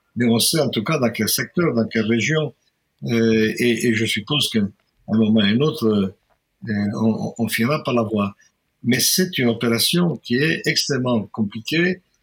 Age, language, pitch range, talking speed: 60-79, French, 110-145 Hz, 190 wpm